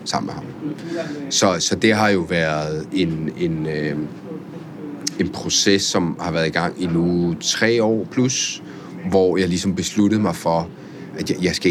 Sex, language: male, Danish